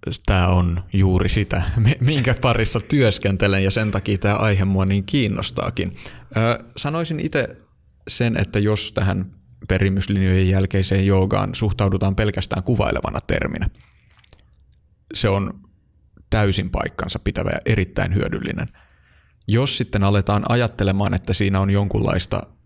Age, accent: 30-49, native